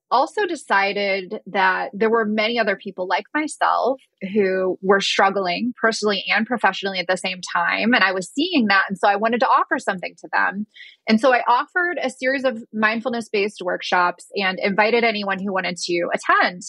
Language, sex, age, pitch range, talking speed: English, female, 20-39, 185-245 Hz, 180 wpm